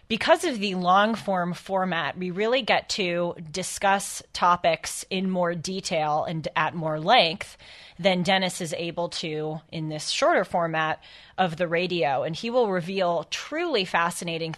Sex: female